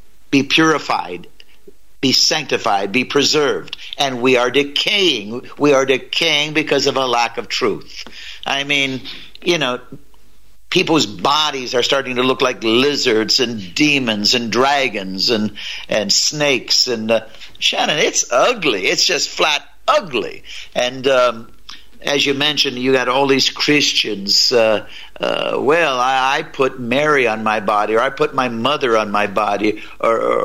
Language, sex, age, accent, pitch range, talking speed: English, male, 60-79, American, 110-140 Hz, 150 wpm